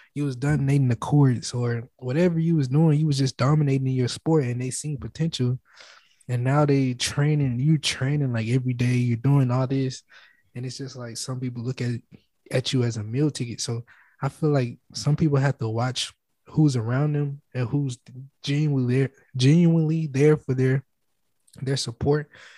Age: 20-39